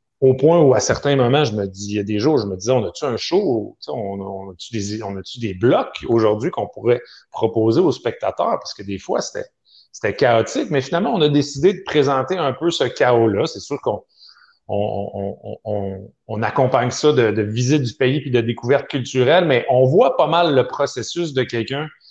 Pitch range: 110-135 Hz